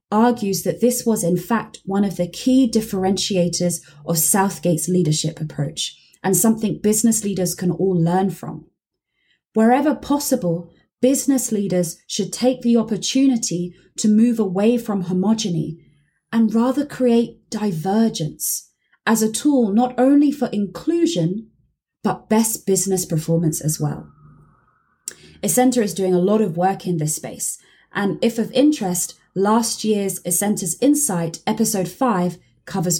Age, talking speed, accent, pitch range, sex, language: 20-39, 135 wpm, British, 180-240 Hz, female, English